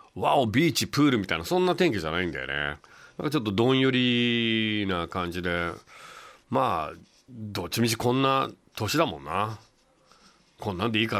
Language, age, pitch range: Japanese, 40-59, 90-125 Hz